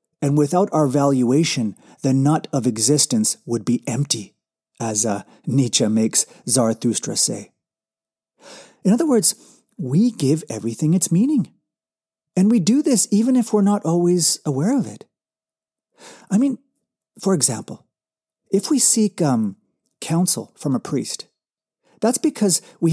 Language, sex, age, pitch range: English, male, 40-59, 140-210 Hz